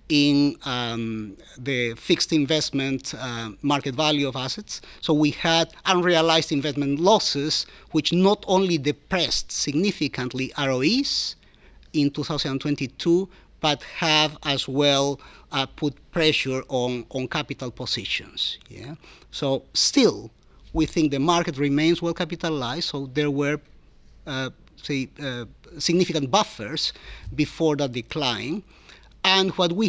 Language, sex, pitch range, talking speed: English, male, 130-160 Hz, 120 wpm